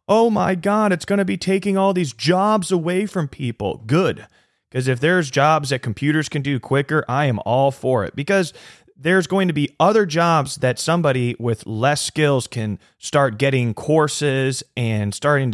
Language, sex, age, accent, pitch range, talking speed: English, male, 30-49, American, 120-160 Hz, 180 wpm